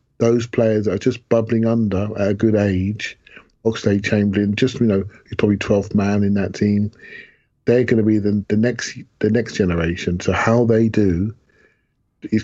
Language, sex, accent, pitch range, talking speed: English, male, British, 90-110 Hz, 180 wpm